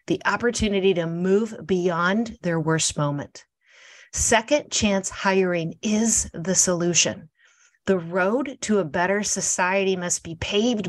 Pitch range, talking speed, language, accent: 165-200 Hz, 125 wpm, English, American